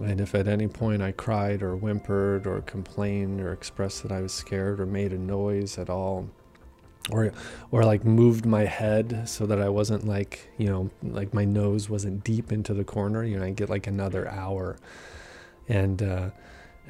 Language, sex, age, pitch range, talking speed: English, male, 20-39, 95-105 Hz, 190 wpm